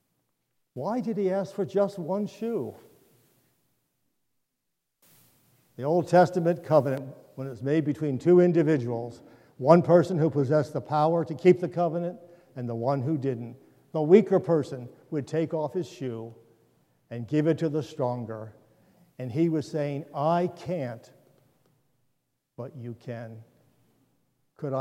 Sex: male